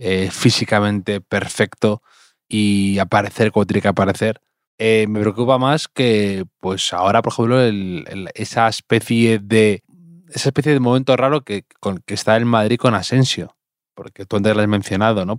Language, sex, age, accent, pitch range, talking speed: Spanish, male, 20-39, Spanish, 95-120 Hz, 170 wpm